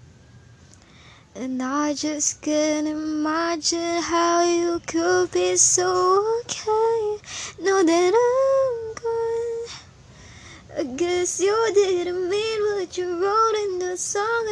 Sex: male